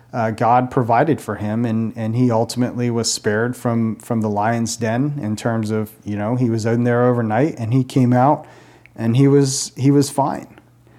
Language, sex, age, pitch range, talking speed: English, male, 40-59, 115-130 Hz, 190 wpm